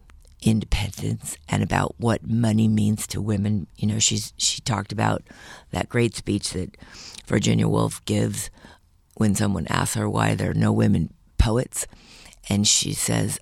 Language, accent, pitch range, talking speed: English, American, 100-115 Hz, 150 wpm